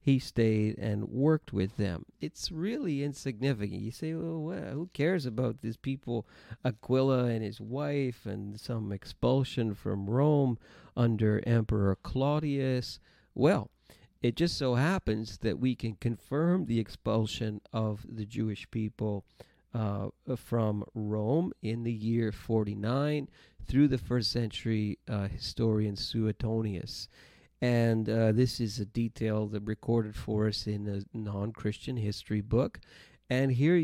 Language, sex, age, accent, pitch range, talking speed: English, male, 40-59, American, 105-125 Hz, 135 wpm